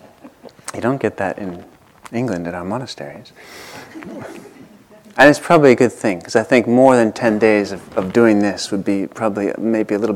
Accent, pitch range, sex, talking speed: American, 100-120 Hz, male, 190 wpm